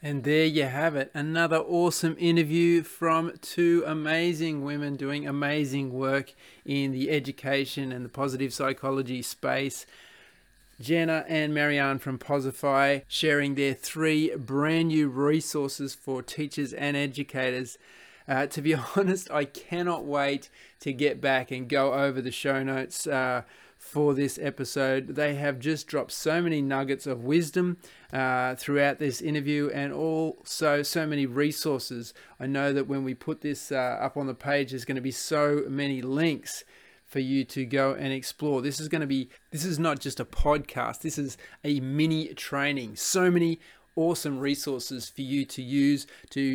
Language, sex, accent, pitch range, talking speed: English, male, Australian, 135-155 Hz, 160 wpm